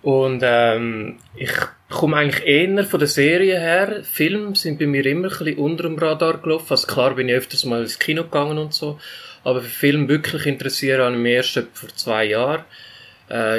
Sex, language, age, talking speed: male, German, 20-39, 200 wpm